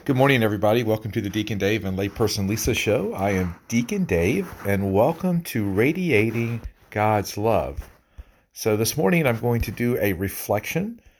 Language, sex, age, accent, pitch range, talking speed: English, male, 40-59, American, 95-120 Hz, 165 wpm